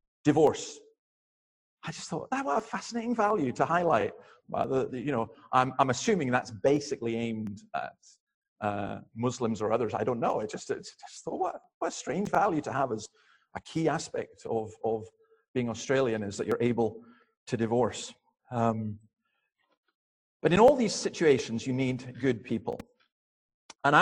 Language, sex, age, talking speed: English, male, 40-59, 170 wpm